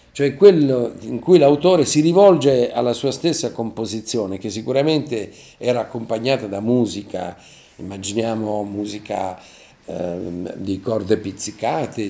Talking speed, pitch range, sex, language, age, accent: 115 wpm, 110-140 Hz, male, Italian, 50-69, native